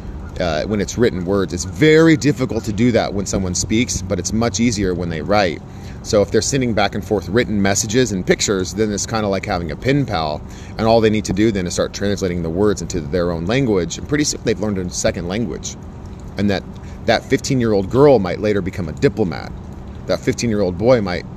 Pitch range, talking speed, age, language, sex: 95-115 Hz, 235 wpm, 30-49, English, male